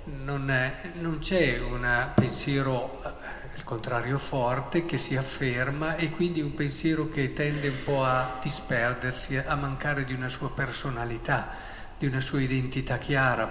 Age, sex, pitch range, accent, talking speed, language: 50-69, male, 125-165 Hz, native, 140 wpm, Italian